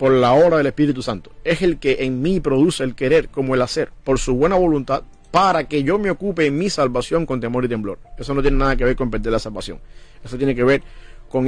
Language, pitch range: English, 130-155 Hz